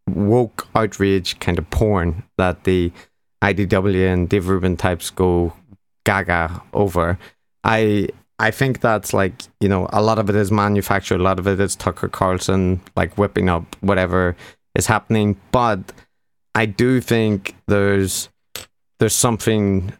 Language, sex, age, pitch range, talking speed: English, male, 30-49, 95-105 Hz, 145 wpm